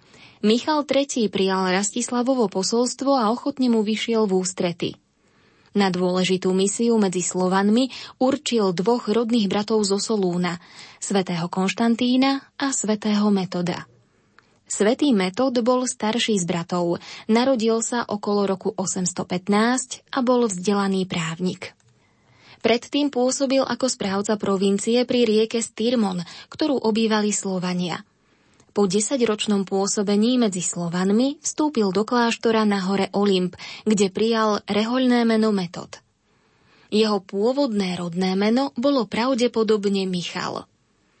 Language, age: Slovak, 20-39